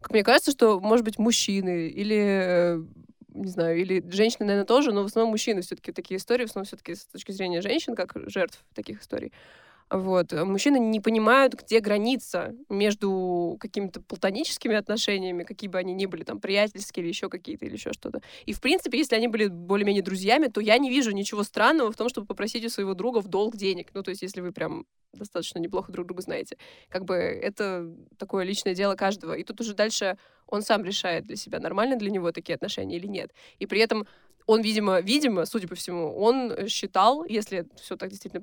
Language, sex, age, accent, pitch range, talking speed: Russian, female, 20-39, native, 185-225 Hz, 200 wpm